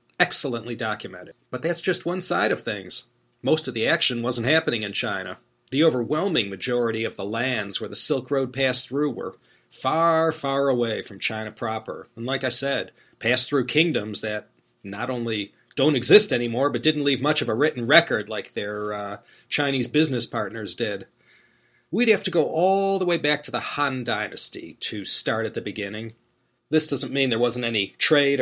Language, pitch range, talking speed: English, 115-155 Hz, 185 wpm